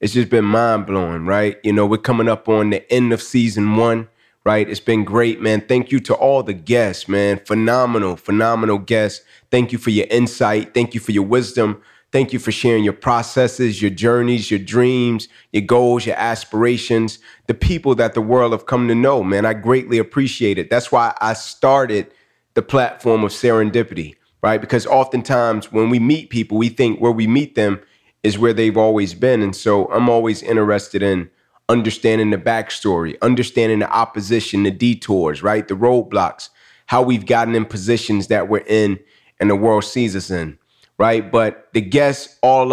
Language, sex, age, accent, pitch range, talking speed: English, male, 30-49, American, 105-120 Hz, 185 wpm